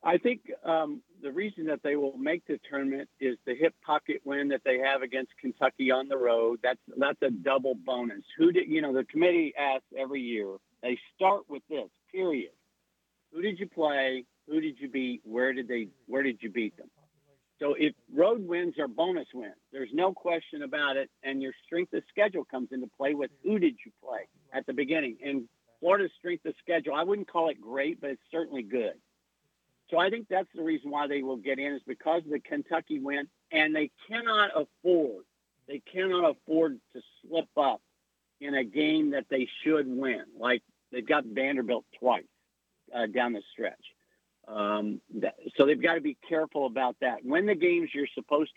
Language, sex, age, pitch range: English, male, 60-79, 130-165 Hz